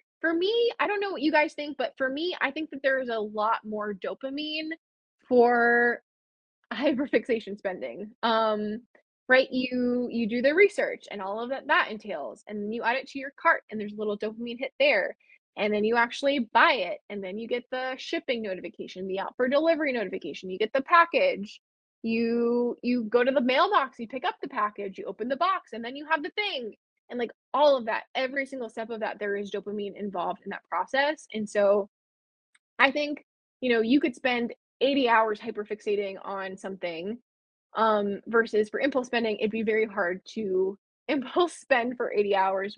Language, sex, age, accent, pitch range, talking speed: English, female, 20-39, American, 210-275 Hz, 200 wpm